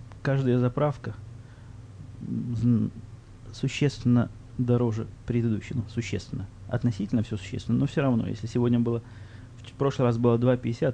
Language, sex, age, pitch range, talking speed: Russian, male, 20-39, 110-125 Hz, 110 wpm